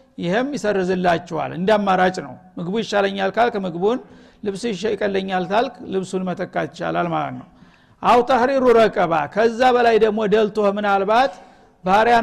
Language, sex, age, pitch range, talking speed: Amharic, male, 60-79, 185-225 Hz, 120 wpm